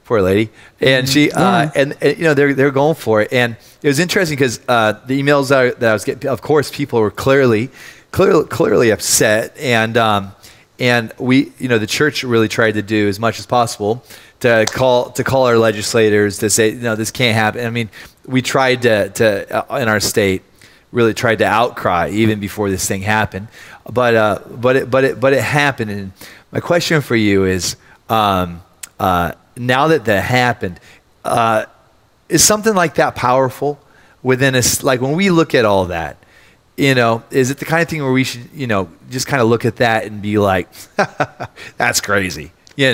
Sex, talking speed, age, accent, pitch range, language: male, 200 wpm, 30-49, American, 105-135 Hz, English